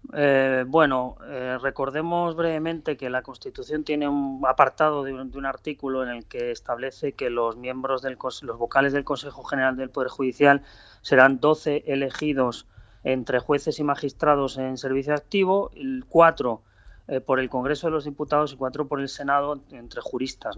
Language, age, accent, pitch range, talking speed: Spanish, 30-49, Spanish, 125-150 Hz, 165 wpm